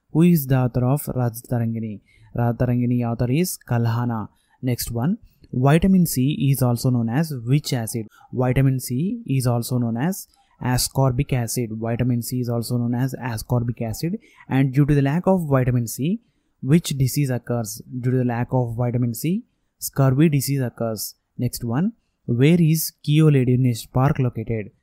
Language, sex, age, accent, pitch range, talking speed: English, male, 20-39, Indian, 120-145 Hz, 155 wpm